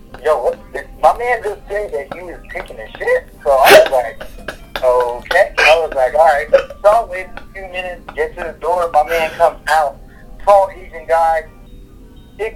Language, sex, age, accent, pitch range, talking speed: English, male, 30-49, American, 160-215 Hz, 185 wpm